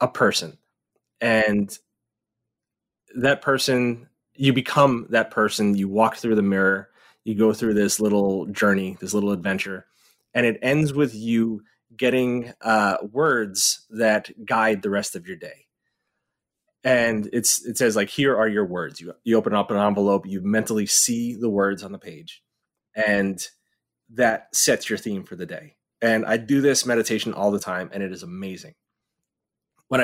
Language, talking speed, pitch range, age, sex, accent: English, 165 wpm, 100-125 Hz, 20-39, male, American